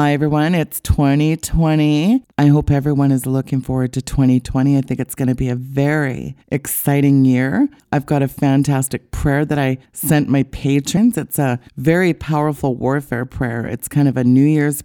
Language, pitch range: English, 130-150 Hz